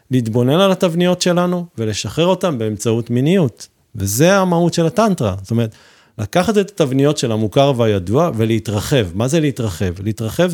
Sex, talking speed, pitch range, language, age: male, 140 wpm, 110-145 Hz, Hebrew, 40-59